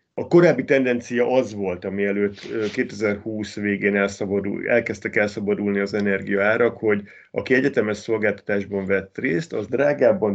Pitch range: 100-115 Hz